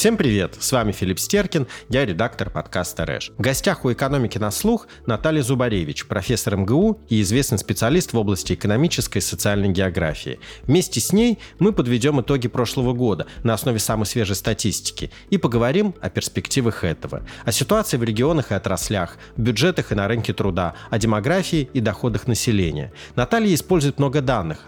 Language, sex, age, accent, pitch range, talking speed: Russian, male, 30-49, native, 105-155 Hz, 165 wpm